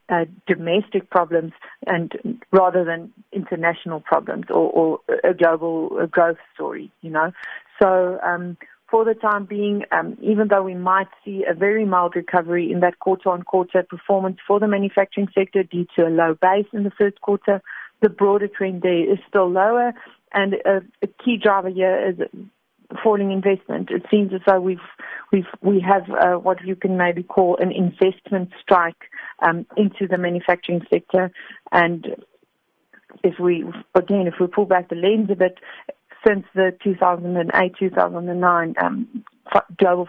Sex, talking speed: female, 155 wpm